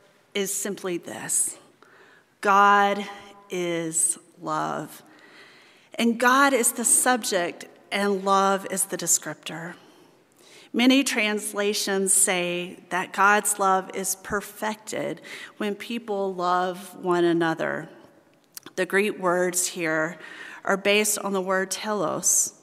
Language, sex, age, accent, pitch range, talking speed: English, female, 40-59, American, 180-225 Hz, 105 wpm